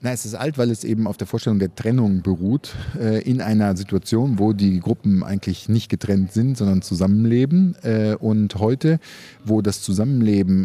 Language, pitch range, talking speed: German, 95-115 Hz, 175 wpm